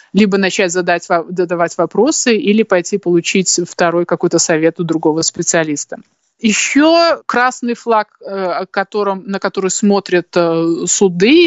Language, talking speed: Russian, 115 wpm